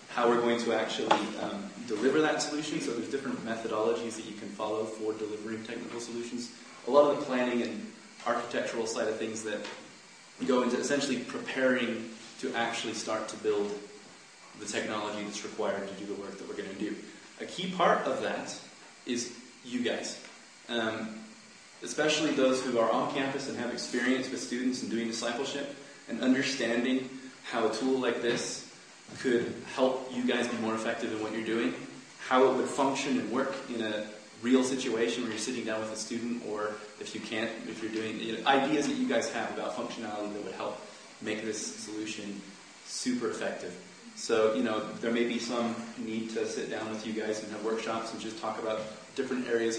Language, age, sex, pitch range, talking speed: English, 20-39, male, 110-125 Hz, 190 wpm